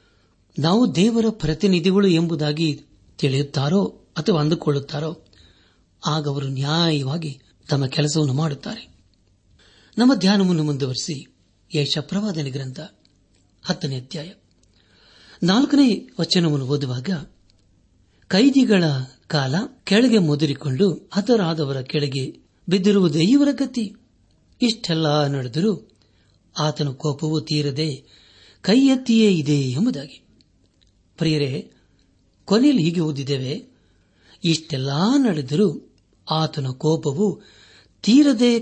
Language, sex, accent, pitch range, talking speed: Kannada, male, native, 125-195 Hz, 75 wpm